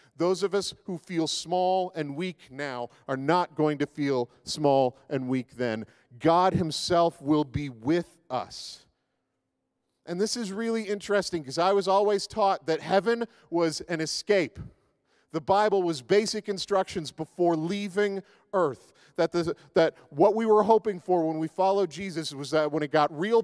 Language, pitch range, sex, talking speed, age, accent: English, 155-195 Hz, male, 165 wpm, 40-59, American